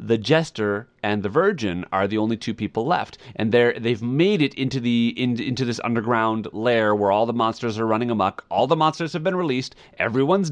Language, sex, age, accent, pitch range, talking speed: English, male, 30-49, American, 110-150 Hz, 205 wpm